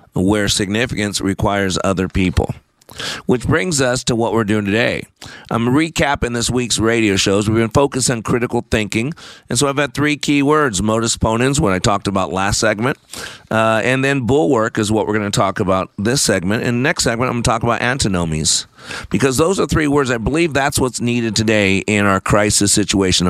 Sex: male